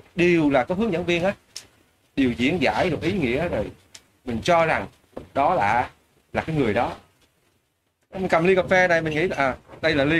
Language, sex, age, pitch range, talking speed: Vietnamese, male, 20-39, 120-175 Hz, 210 wpm